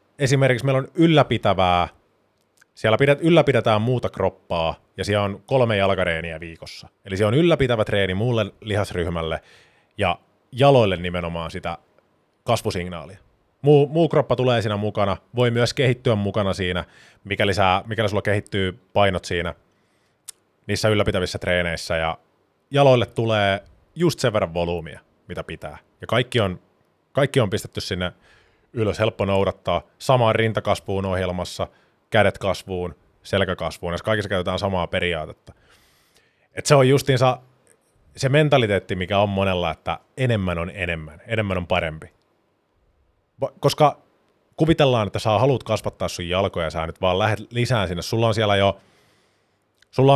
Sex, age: male, 20-39